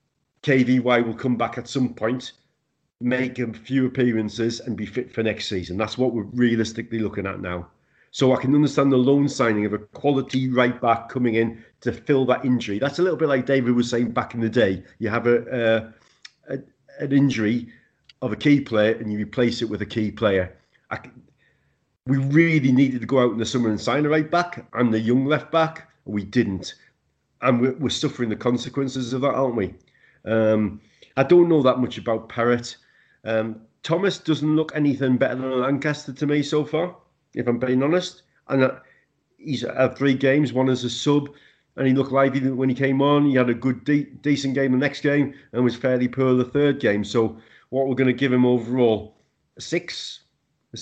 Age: 40-59